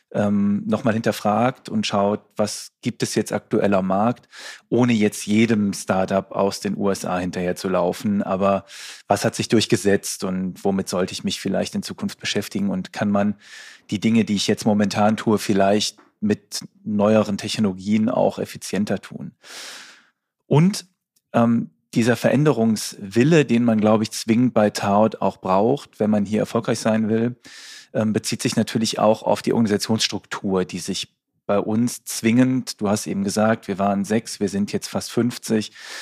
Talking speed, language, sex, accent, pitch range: 155 wpm, German, male, German, 105-120 Hz